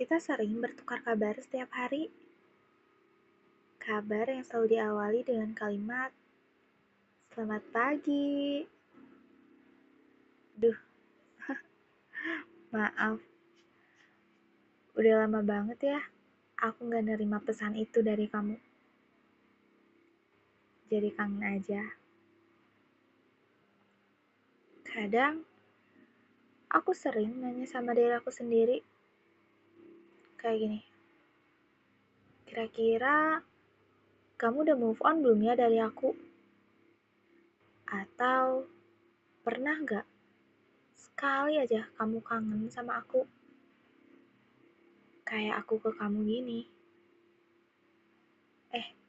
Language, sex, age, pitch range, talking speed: Indonesian, female, 20-39, 220-295 Hz, 80 wpm